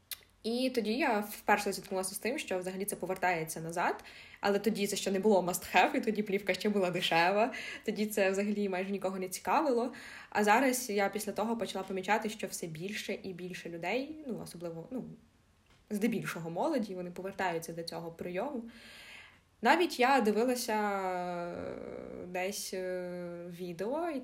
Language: Ukrainian